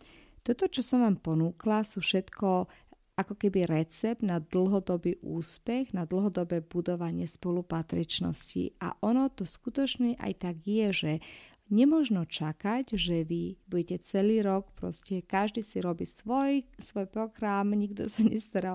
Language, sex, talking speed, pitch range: Slovak, female, 135 wpm, 170-220 Hz